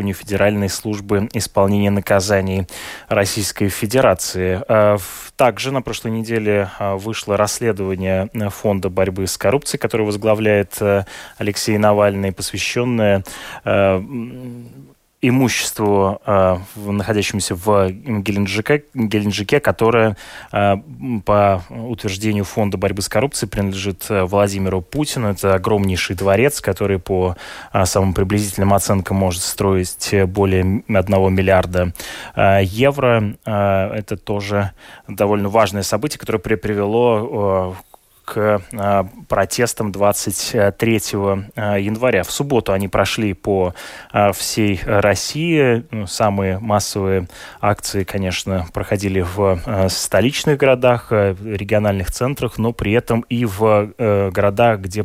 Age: 20-39